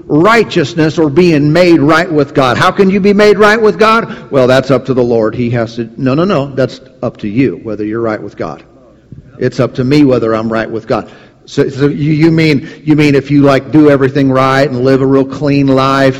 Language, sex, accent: English, male, American